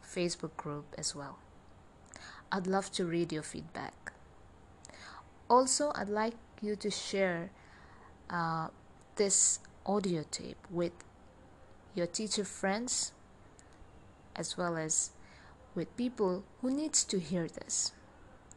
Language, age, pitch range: English, 20-39, 155-215 Hz